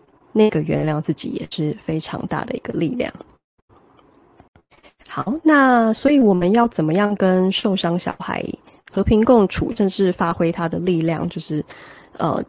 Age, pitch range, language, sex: 20-39, 155-195 Hz, Chinese, female